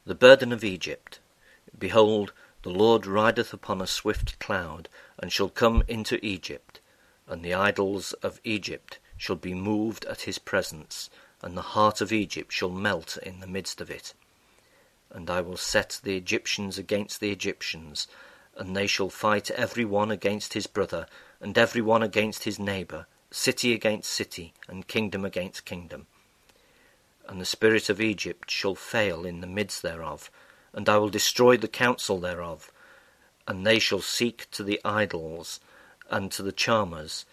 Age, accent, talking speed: 50-69, British, 160 wpm